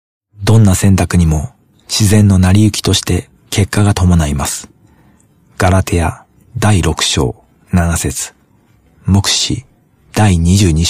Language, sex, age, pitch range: Japanese, male, 40-59, 85-110 Hz